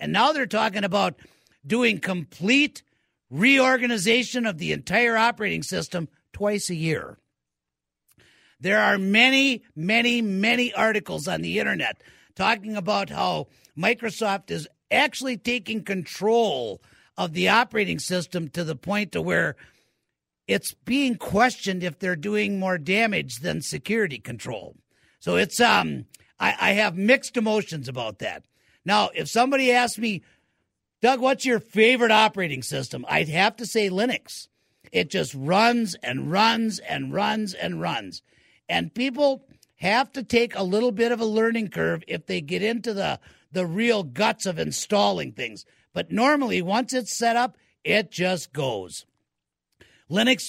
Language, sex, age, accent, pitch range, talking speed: English, male, 50-69, American, 180-235 Hz, 145 wpm